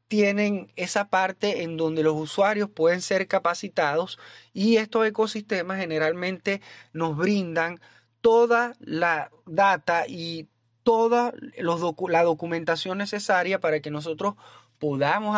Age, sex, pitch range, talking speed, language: 30-49, male, 150-195 Hz, 115 wpm, Spanish